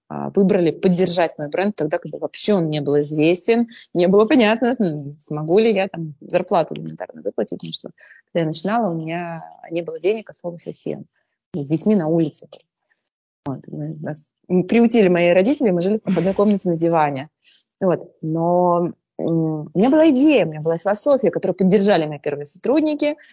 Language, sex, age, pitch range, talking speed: Russian, female, 20-39, 155-210 Hz, 170 wpm